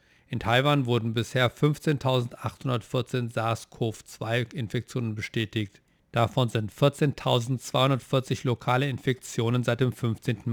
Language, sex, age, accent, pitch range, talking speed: German, male, 50-69, German, 115-130 Hz, 85 wpm